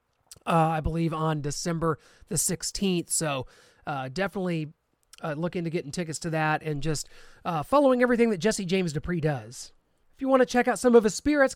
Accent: American